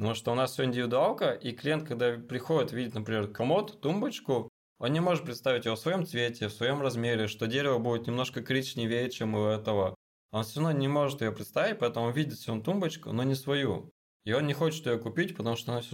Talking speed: 220 wpm